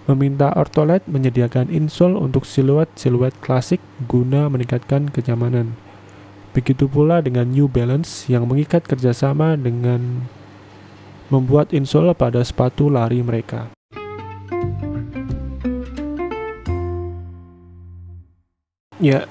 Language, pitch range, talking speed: Indonesian, 115-140 Hz, 80 wpm